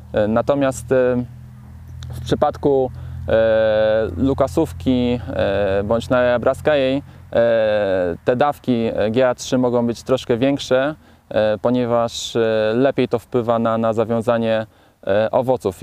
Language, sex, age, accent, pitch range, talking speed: Polish, male, 20-39, native, 110-130 Hz, 100 wpm